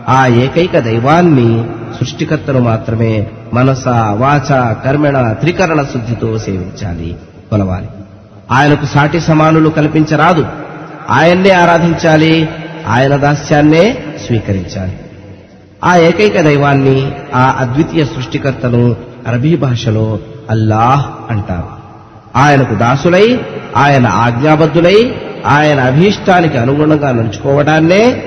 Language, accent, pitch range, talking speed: Telugu, native, 115-155 Hz, 75 wpm